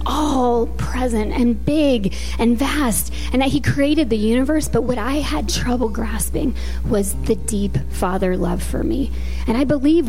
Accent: American